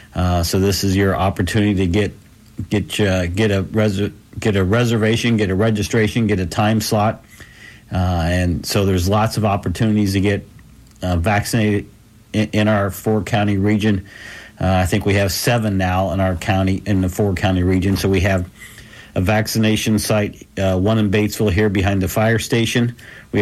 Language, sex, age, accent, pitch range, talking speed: English, male, 50-69, American, 100-110 Hz, 175 wpm